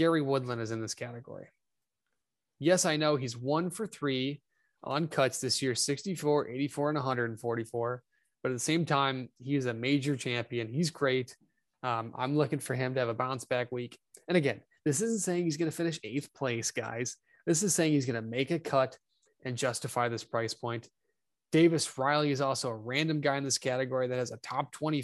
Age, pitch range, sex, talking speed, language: 20-39, 120-150 Hz, male, 205 wpm, English